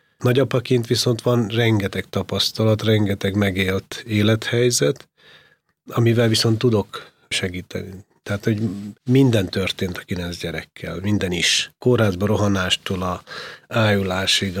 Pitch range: 95-120 Hz